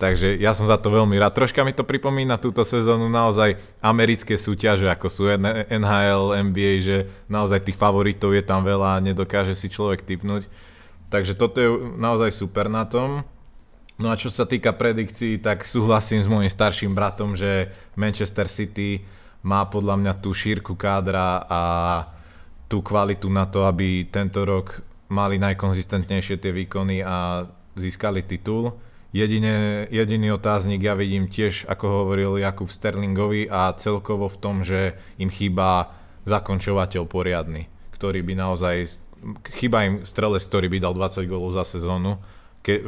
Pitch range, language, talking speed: 95-105 Hz, Slovak, 150 wpm